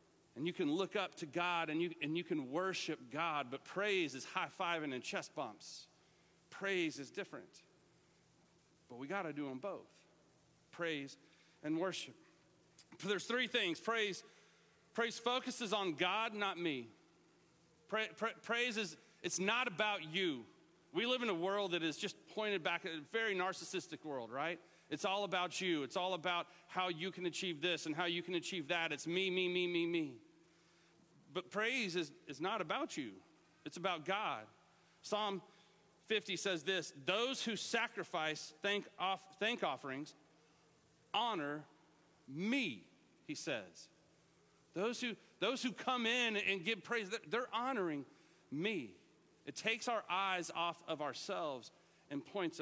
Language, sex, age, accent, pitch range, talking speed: English, male, 40-59, American, 165-205 Hz, 155 wpm